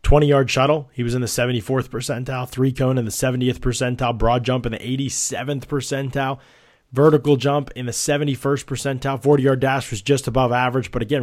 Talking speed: 175 wpm